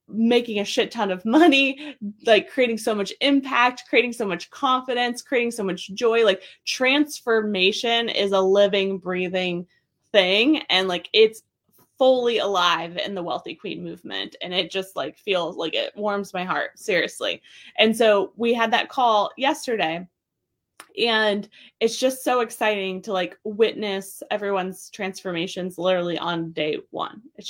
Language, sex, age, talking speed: English, female, 20-39, 150 wpm